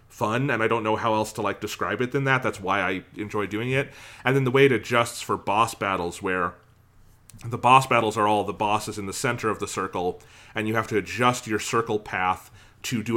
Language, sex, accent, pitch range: English, male, American, 95-120 Hz